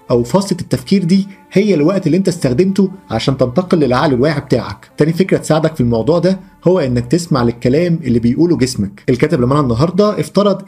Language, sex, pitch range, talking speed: Arabic, male, 130-180 Hz, 175 wpm